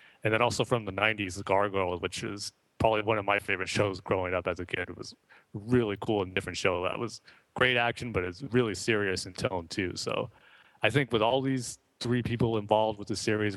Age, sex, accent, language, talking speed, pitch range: 30-49, male, American, English, 220 wpm, 100-115 Hz